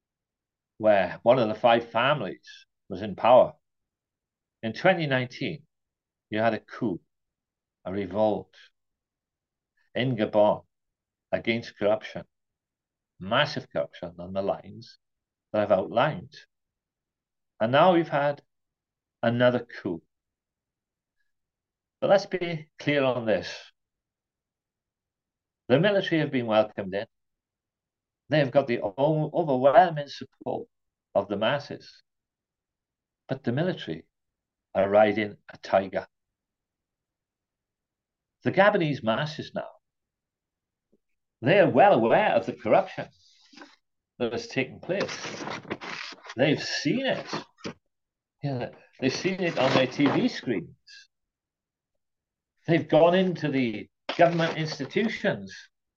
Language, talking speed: English, 100 wpm